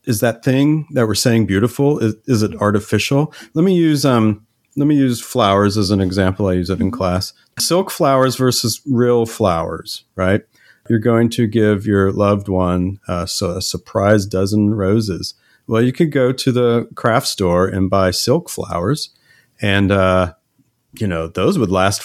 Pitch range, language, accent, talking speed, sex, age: 95-130 Hz, English, American, 175 wpm, male, 40-59